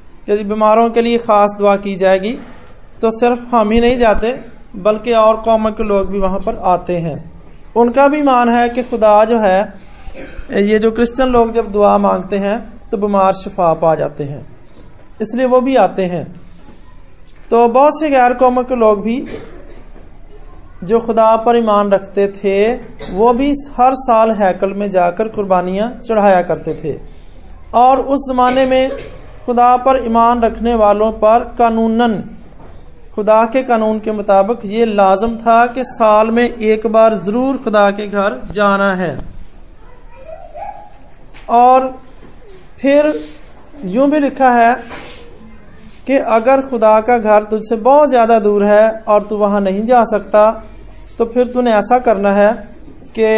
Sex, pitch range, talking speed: male, 205-245 Hz, 150 wpm